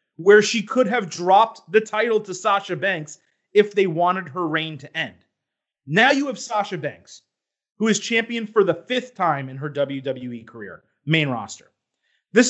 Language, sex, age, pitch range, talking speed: English, male, 30-49, 160-215 Hz, 175 wpm